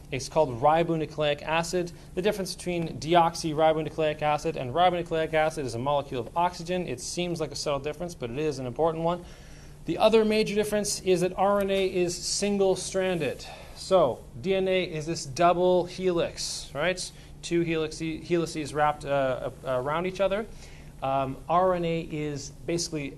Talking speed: 145 wpm